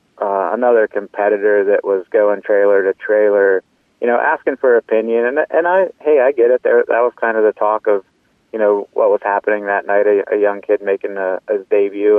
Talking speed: 215 wpm